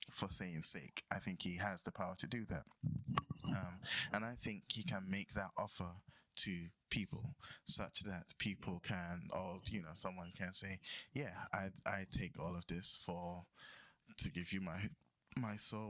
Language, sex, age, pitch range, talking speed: English, male, 20-39, 90-100 Hz, 175 wpm